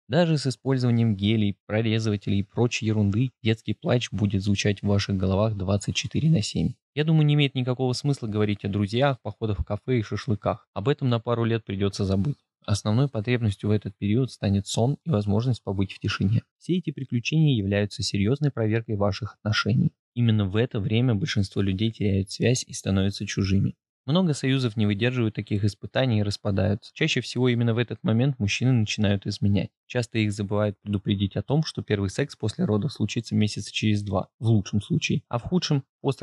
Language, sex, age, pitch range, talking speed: Russian, male, 20-39, 105-130 Hz, 180 wpm